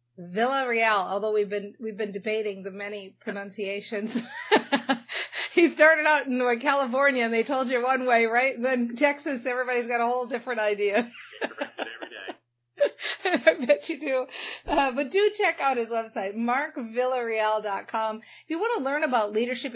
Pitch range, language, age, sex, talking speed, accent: 205-265 Hz, English, 40-59, female, 160 wpm, American